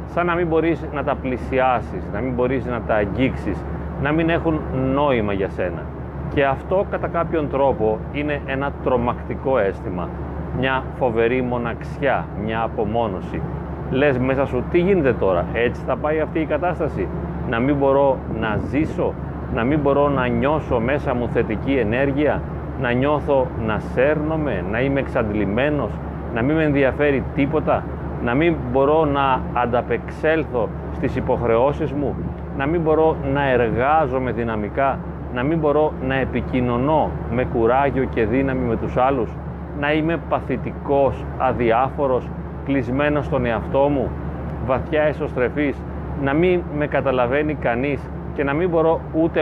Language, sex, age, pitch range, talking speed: Greek, male, 40-59, 115-150 Hz, 140 wpm